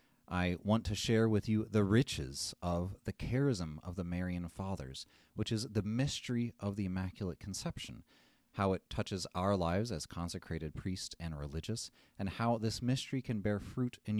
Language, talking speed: English, 175 wpm